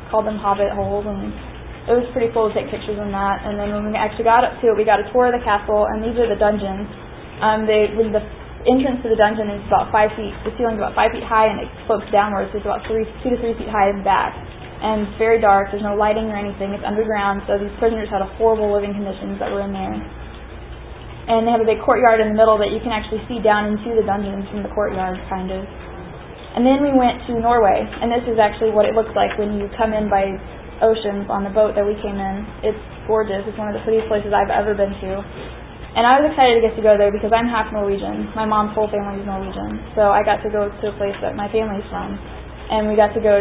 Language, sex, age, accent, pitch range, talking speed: English, female, 10-29, American, 205-220 Hz, 265 wpm